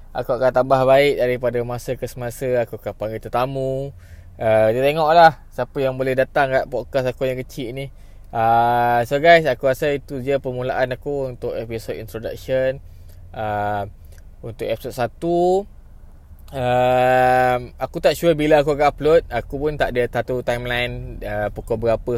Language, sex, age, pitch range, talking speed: Malay, male, 20-39, 110-140 Hz, 160 wpm